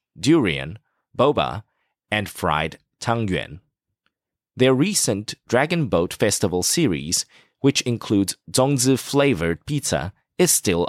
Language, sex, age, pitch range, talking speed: English, male, 30-49, 95-135 Hz, 95 wpm